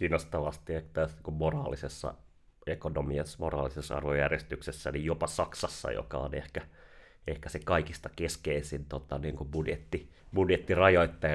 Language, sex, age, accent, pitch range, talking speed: Finnish, male, 30-49, native, 75-80 Hz, 105 wpm